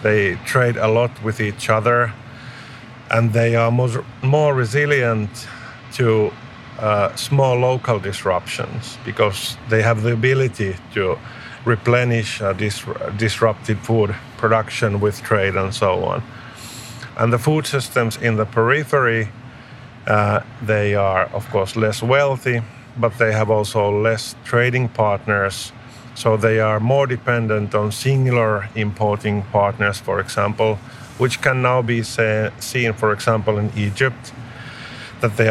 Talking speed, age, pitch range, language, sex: 130 wpm, 50-69, 105-125 Hz, English, male